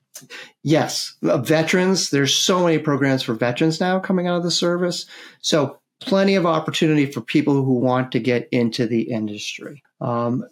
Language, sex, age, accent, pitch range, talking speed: English, male, 40-59, American, 125-150 Hz, 160 wpm